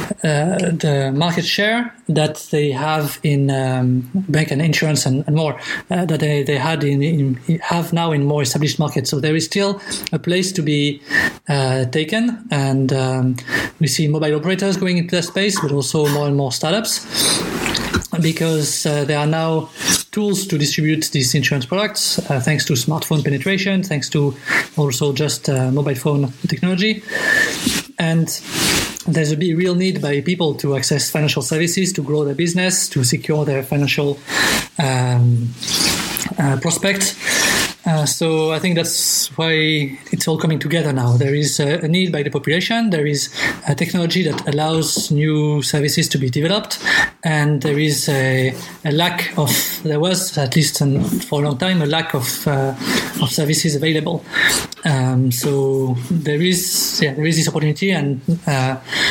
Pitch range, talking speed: 145-175 Hz, 165 wpm